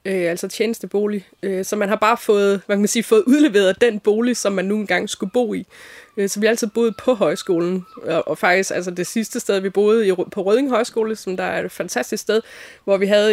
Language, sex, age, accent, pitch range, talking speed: Danish, female, 20-39, native, 190-230 Hz, 245 wpm